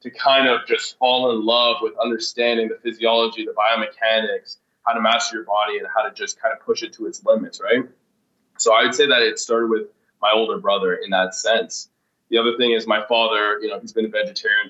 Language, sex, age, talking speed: English, male, 20-39, 230 wpm